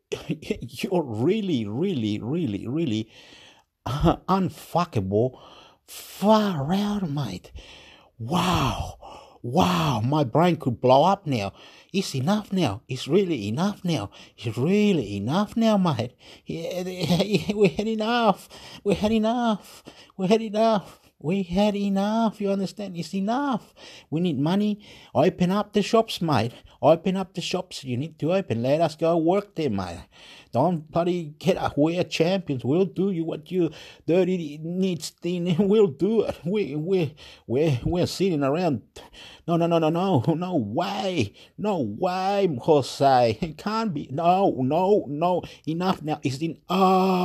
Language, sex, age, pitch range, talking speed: English, male, 50-69, 145-195 Hz, 145 wpm